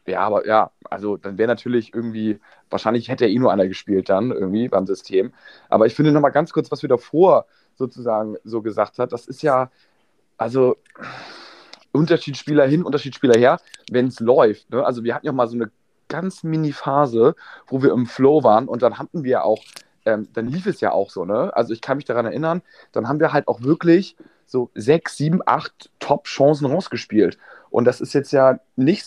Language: German